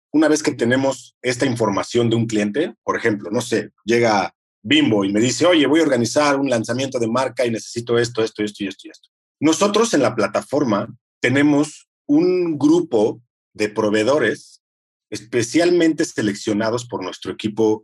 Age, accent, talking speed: 40-59, Mexican, 160 wpm